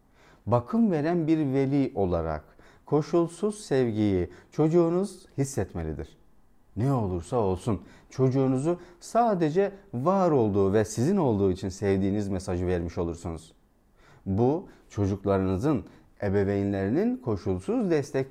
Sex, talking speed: male, 95 wpm